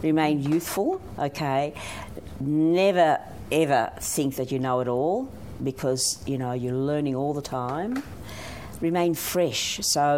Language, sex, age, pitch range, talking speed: English, female, 50-69, 130-160 Hz, 140 wpm